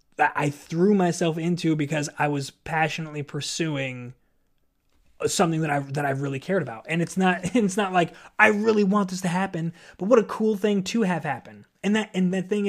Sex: male